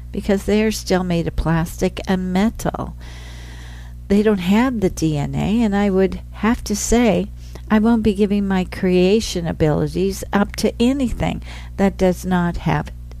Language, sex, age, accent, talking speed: English, female, 60-79, American, 155 wpm